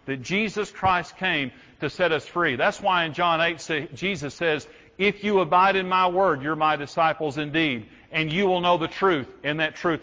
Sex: male